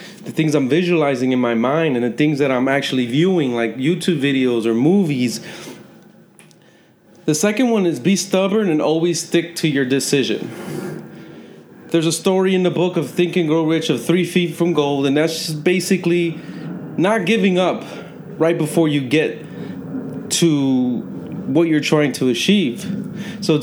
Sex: male